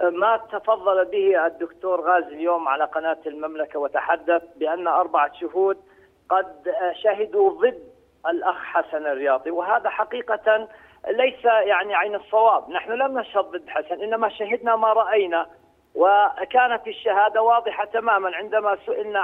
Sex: male